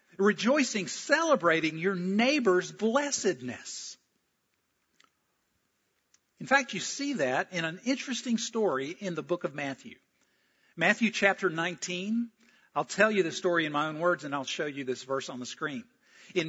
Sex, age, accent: male, 50-69, American